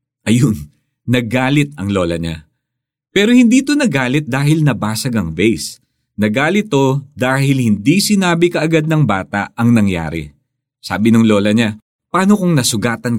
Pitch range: 100-140 Hz